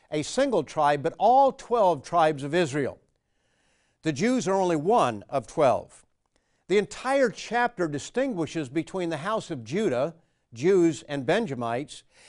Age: 60-79